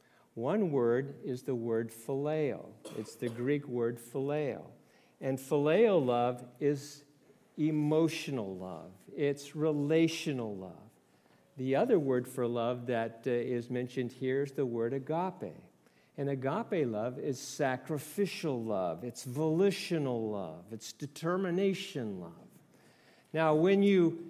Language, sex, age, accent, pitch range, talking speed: English, male, 50-69, American, 115-160 Hz, 120 wpm